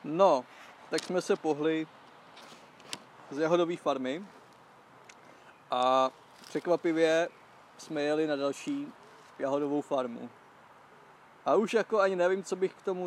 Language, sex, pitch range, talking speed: Czech, male, 140-170 Hz, 115 wpm